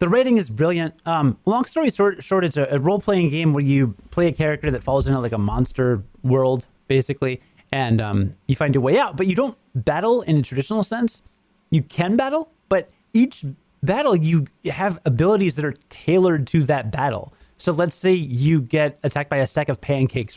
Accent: American